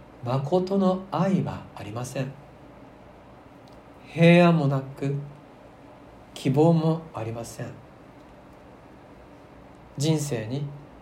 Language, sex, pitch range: Japanese, male, 120-150 Hz